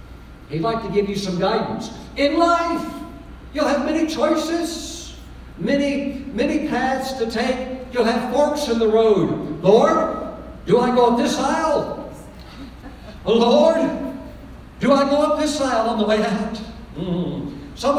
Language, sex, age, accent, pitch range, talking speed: English, male, 60-79, American, 195-290 Hz, 145 wpm